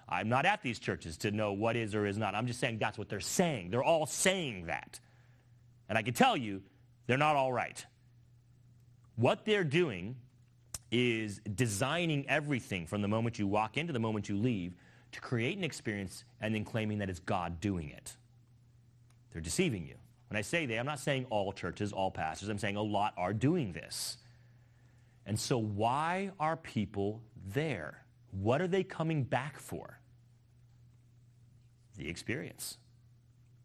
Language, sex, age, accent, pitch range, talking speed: English, male, 30-49, American, 110-135 Hz, 170 wpm